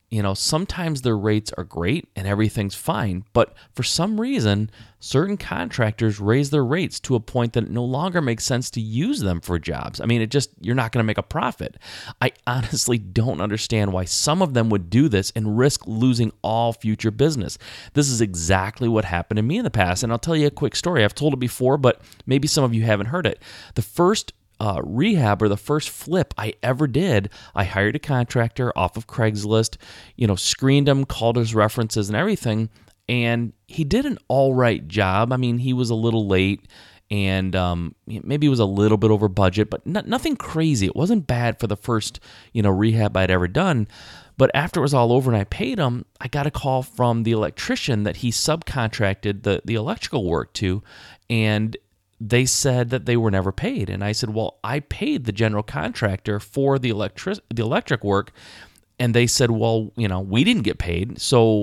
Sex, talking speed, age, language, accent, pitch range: male, 210 wpm, 30-49, English, American, 100-125 Hz